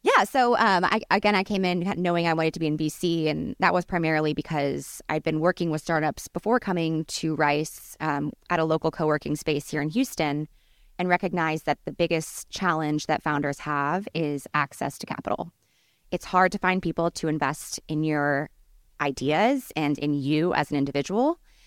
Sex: female